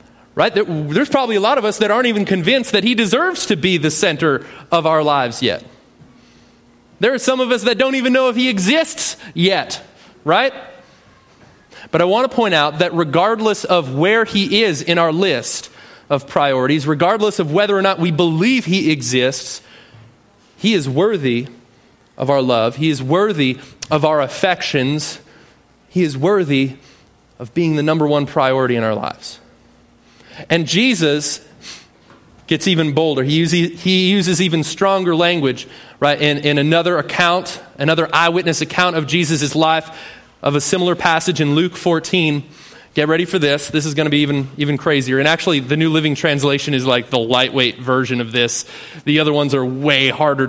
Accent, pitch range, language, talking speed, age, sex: American, 145-195 Hz, English, 175 wpm, 30-49, male